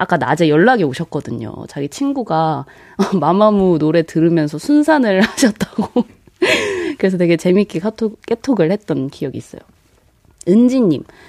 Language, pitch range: Korean, 155-230 Hz